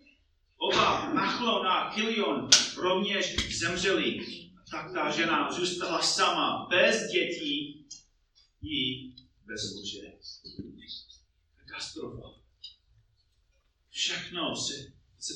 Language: Czech